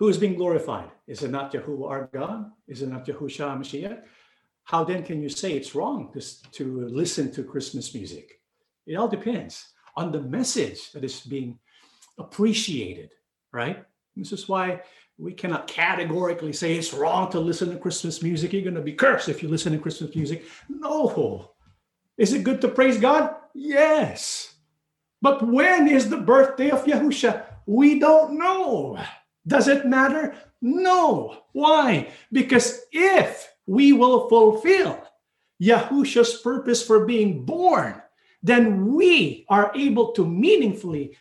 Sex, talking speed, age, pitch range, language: male, 150 wpm, 50-69, 165-270 Hz, English